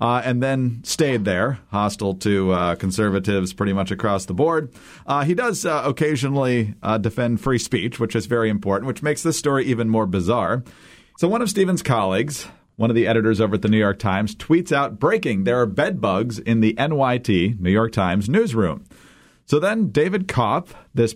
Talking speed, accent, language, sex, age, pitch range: 190 wpm, American, English, male, 40-59, 110-150 Hz